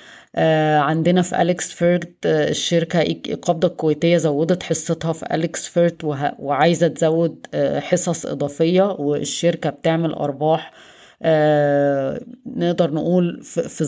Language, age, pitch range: Arabic, 20-39, 150-170 Hz